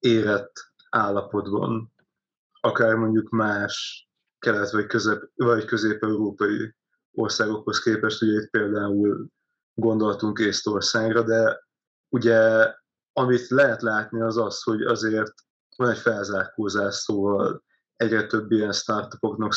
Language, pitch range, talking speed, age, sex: Hungarian, 105-115 Hz, 105 wpm, 20-39, male